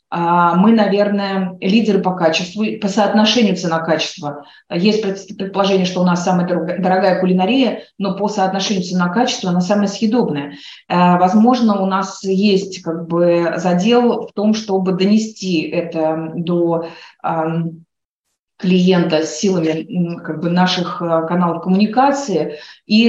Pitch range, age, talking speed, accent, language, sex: 175-200 Hz, 30-49, 105 wpm, native, Russian, female